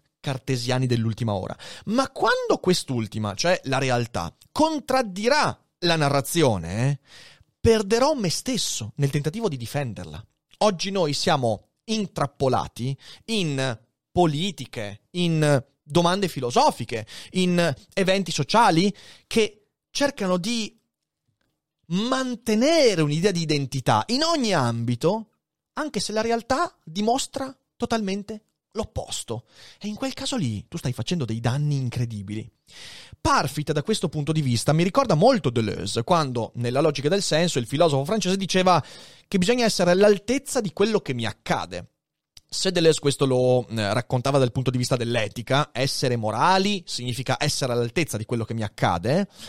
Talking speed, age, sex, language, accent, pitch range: 130 wpm, 30-49, male, Italian, native, 125-200 Hz